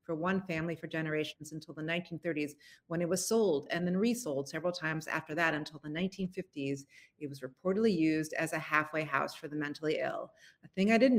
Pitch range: 155-195 Hz